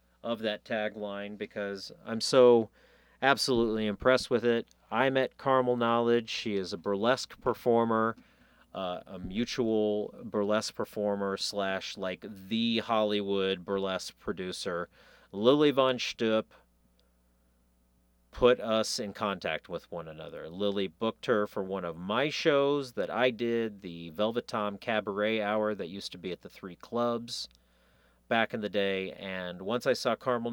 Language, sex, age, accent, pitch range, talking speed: English, male, 40-59, American, 100-120 Hz, 140 wpm